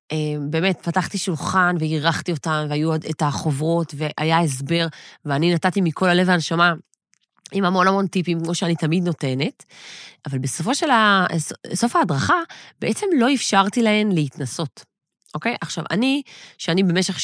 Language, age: Hebrew, 30-49